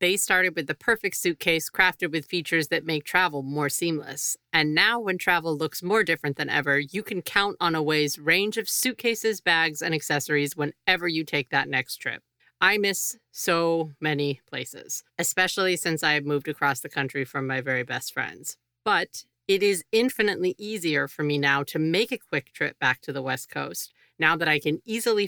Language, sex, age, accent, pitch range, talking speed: English, female, 40-59, American, 145-180 Hz, 190 wpm